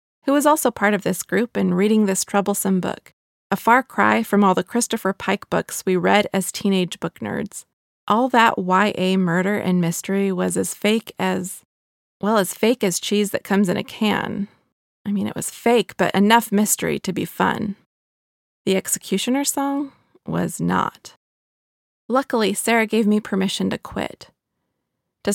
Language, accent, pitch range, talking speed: English, American, 185-220 Hz, 170 wpm